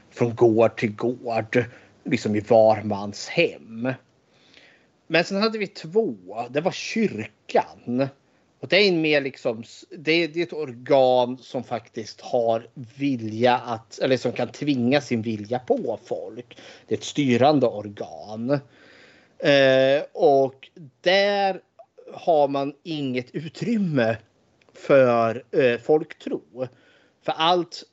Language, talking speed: Swedish, 120 wpm